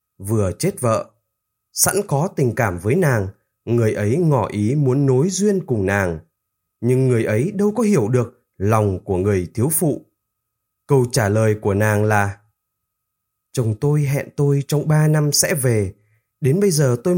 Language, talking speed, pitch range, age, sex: Vietnamese, 170 wpm, 110-160 Hz, 20-39, male